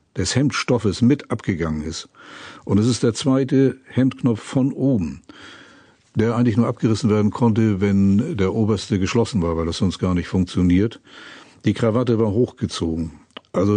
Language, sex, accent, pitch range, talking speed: German, male, German, 90-115 Hz, 155 wpm